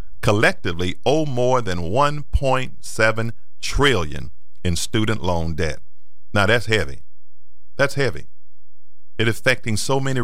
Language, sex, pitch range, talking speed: English, male, 90-130 Hz, 125 wpm